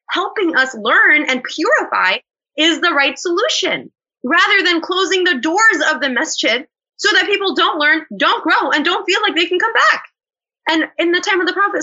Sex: female